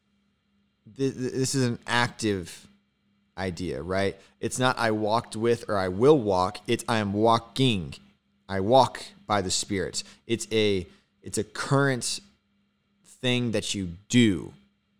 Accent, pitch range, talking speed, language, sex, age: American, 100-125 Hz, 130 wpm, English, male, 20-39